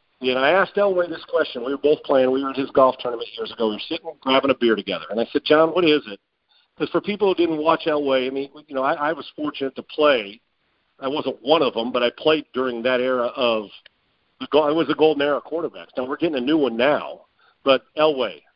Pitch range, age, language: 130-155 Hz, 50-69, English